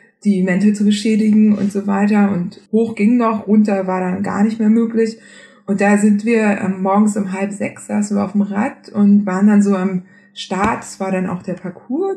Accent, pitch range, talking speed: German, 190-225 Hz, 210 wpm